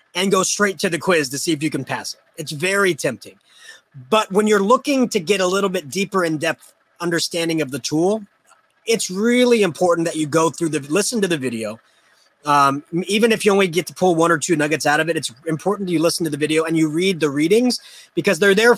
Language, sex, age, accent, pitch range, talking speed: English, male, 30-49, American, 155-195 Hz, 240 wpm